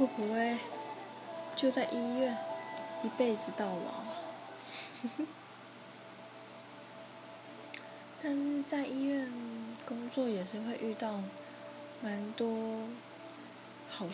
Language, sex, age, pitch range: Chinese, female, 20-39, 180-255 Hz